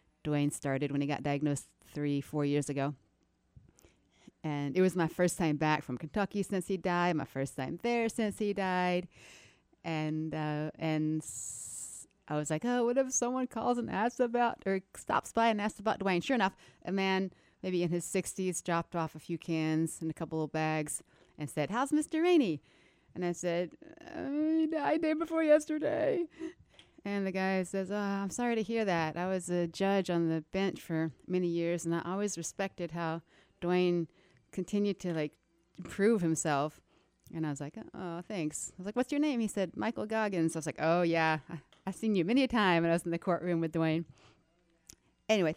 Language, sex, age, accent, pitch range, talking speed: English, female, 30-49, American, 155-220 Hz, 200 wpm